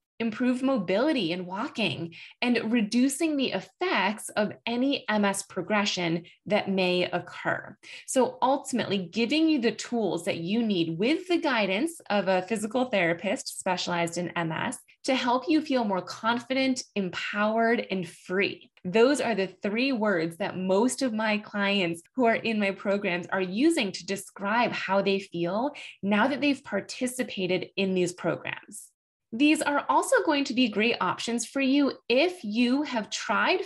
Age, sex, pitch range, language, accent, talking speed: 20-39, female, 185-255 Hz, English, American, 155 wpm